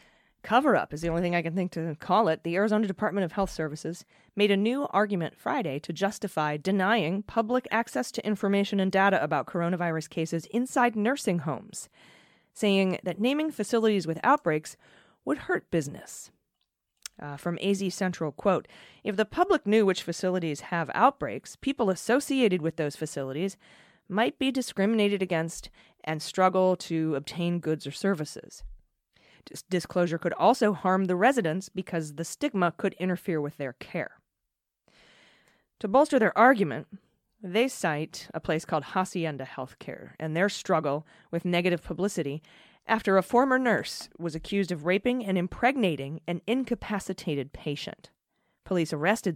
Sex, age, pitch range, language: female, 30-49, 160-210 Hz, English